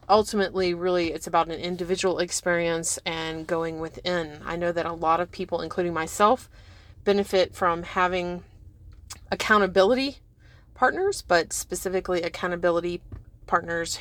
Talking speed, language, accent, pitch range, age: 120 wpm, English, American, 160-185 Hz, 30-49